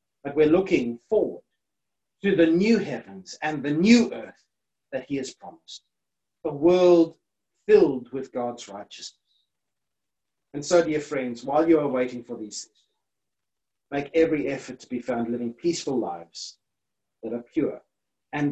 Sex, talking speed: male, 150 wpm